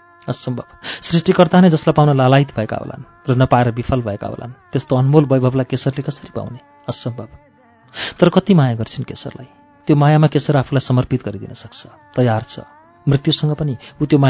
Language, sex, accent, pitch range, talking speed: English, male, Indian, 120-150 Hz, 75 wpm